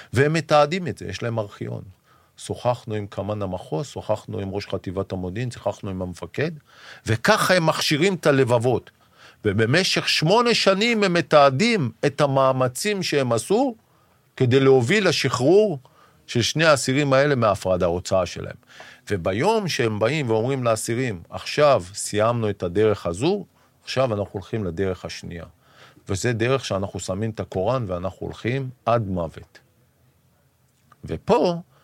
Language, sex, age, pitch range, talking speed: Hebrew, male, 50-69, 95-135 Hz, 130 wpm